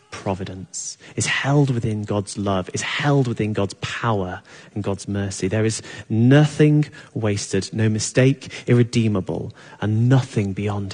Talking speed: 130 wpm